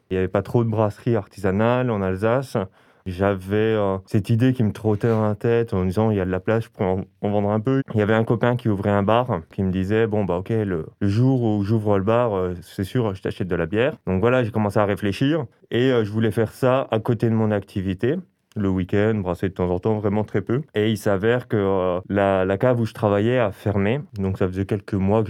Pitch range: 95-115 Hz